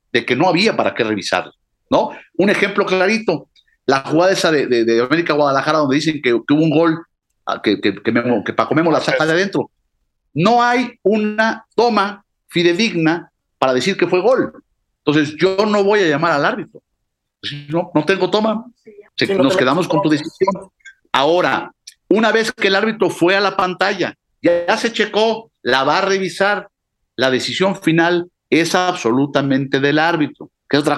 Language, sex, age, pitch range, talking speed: Spanish, male, 50-69, 145-195 Hz, 175 wpm